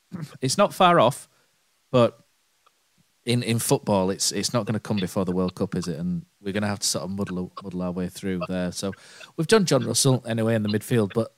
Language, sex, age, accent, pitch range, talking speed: English, male, 30-49, British, 100-140 Hz, 230 wpm